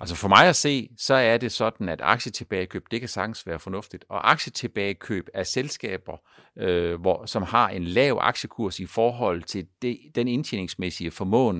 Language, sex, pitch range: Danish, male, 110-160 Hz